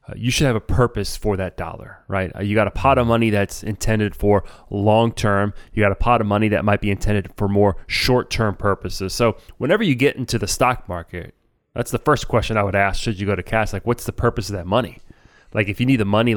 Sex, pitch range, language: male, 100-125 Hz, English